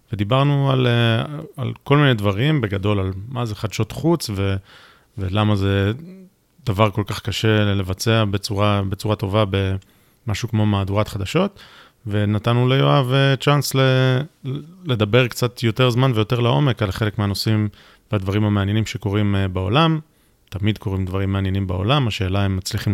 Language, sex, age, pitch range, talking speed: Hebrew, male, 30-49, 100-125 Hz, 135 wpm